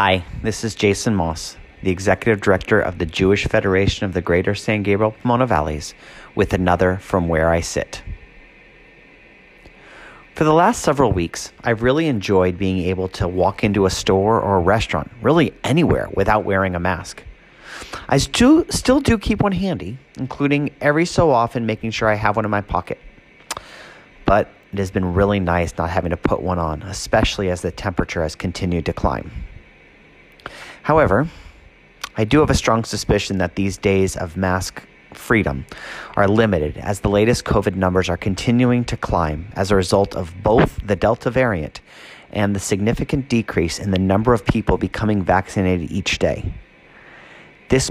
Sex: male